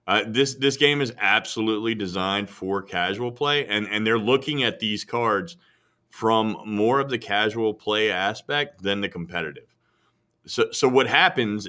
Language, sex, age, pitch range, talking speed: English, male, 30-49, 105-135 Hz, 160 wpm